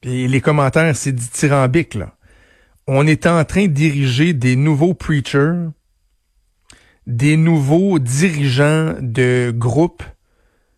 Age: 60-79